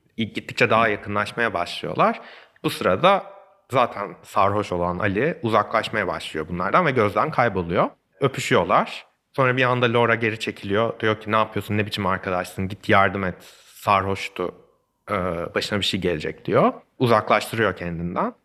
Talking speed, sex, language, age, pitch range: 140 wpm, male, Turkish, 30-49, 100-125 Hz